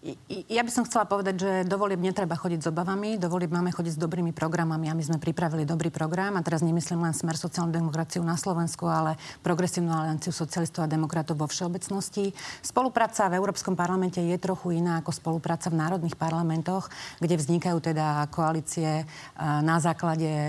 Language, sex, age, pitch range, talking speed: Slovak, female, 40-59, 160-175 Hz, 165 wpm